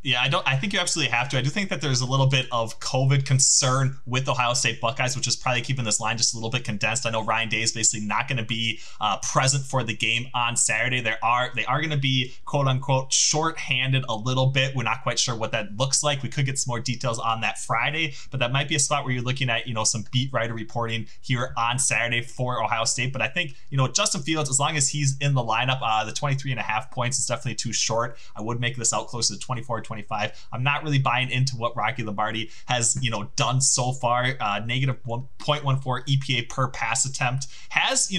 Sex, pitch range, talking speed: male, 115-135 Hz, 255 wpm